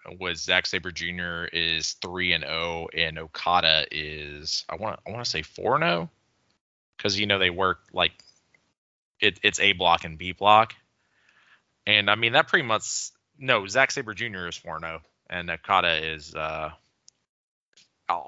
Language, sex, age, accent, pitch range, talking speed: English, male, 20-39, American, 80-100 Hz, 165 wpm